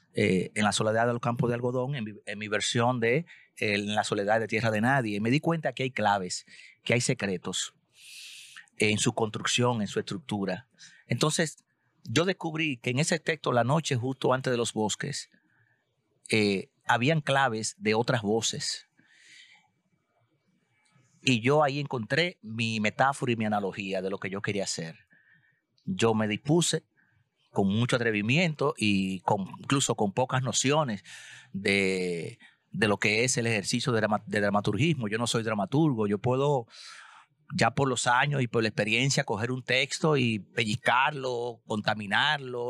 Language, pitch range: Spanish, 105-140 Hz